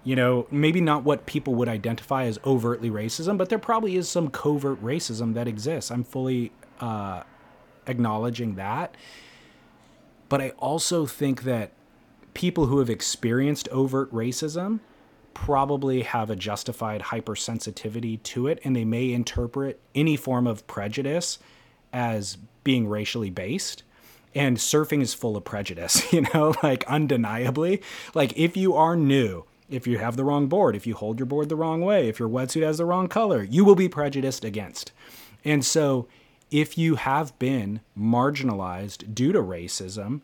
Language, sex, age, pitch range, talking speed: English, male, 30-49, 115-150 Hz, 160 wpm